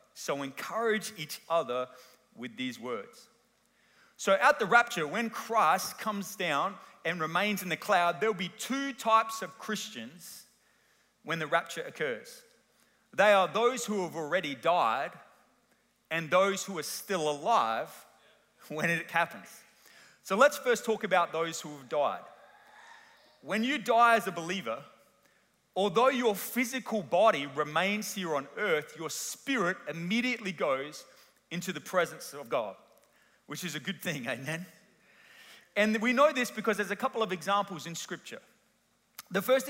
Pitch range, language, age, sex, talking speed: 165-225 Hz, English, 30-49, male, 150 wpm